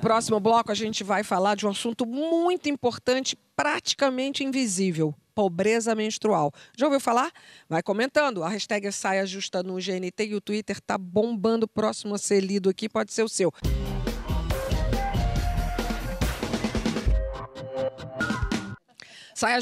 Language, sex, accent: Portuguese, female, Brazilian